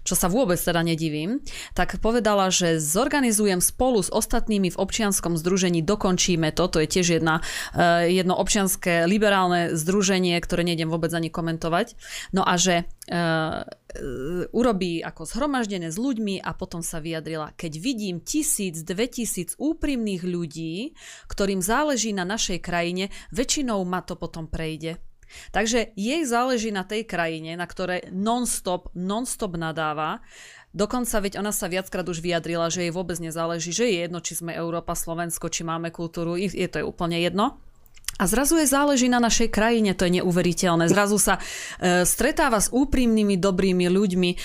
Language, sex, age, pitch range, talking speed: Slovak, female, 30-49, 170-215 Hz, 155 wpm